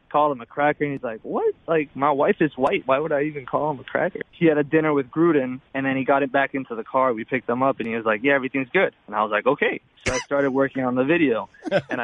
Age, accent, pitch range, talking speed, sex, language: 20-39, American, 130-155 Hz, 295 wpm, male, English